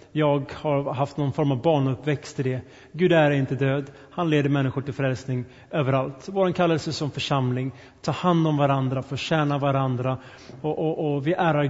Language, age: Swedish, 30-49